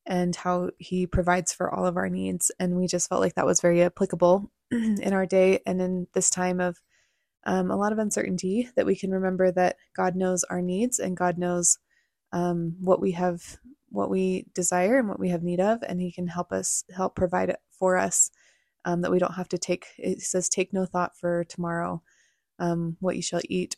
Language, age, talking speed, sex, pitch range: English, 20-39, 215 wpm, female, 180-195 Hz